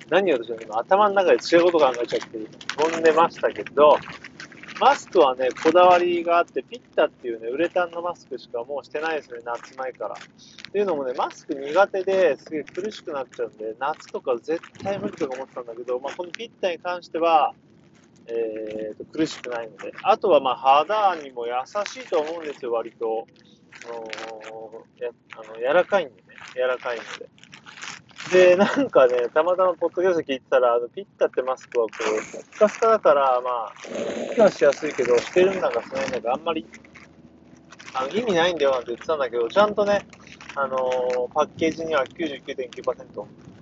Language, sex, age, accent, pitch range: Japanese, male, 40-59, native, 125-200 Hz